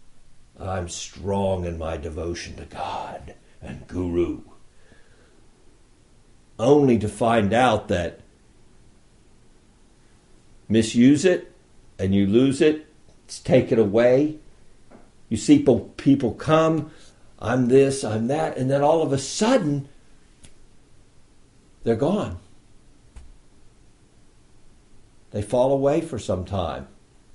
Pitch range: 105-165 Hz